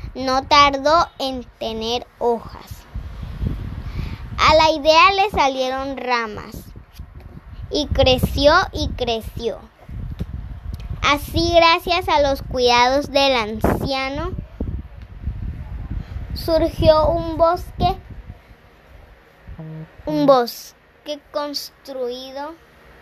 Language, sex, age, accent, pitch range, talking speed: Spanish, male, 20-39, Mexican, 195-295 Hz, 75 wpm